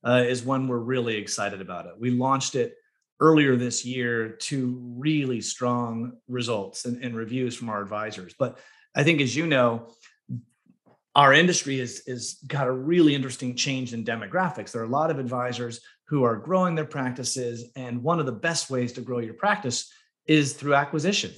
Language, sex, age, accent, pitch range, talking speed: English, male, 30-49, American, 120-155 Hz, 185 wpm